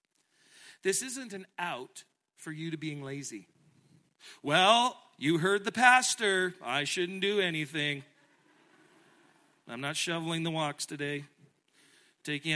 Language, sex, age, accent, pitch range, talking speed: English, male, 40-59, American, 155-225 Hz, 120 wpm